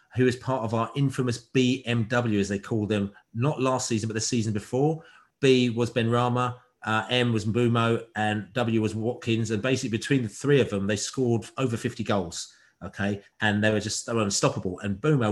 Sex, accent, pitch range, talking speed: male, British, 105-130 Hz, 205 wpm